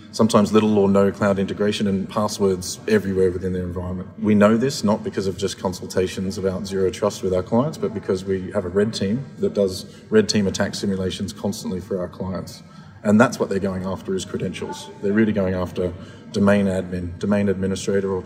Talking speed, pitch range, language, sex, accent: 195 wpm, 95-105 Hz, English, male, Australian